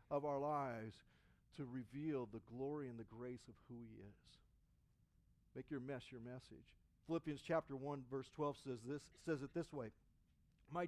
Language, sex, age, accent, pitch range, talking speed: English, male, 50-69, American, 130-200 Hz, 170 wpm